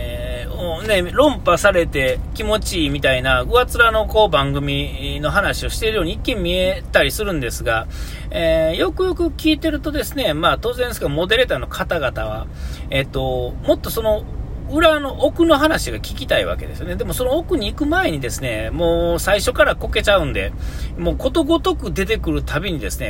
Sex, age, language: male, 40-59, Japanese